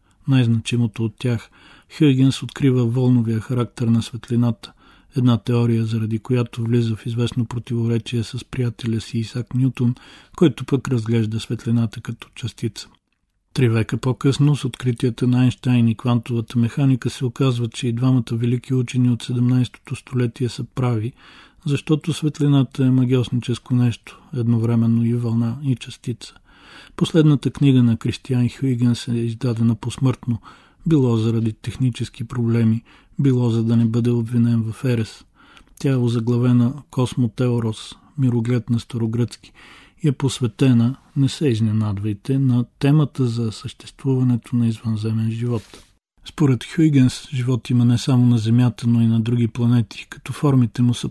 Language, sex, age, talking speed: Bulgarian, male, 40-59, 135 wpm